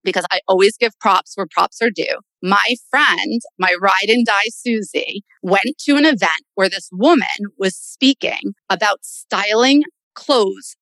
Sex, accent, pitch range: female, American, 195-265 Hz